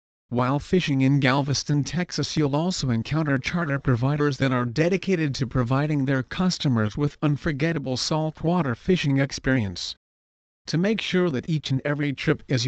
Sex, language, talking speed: male, English, 145 wpm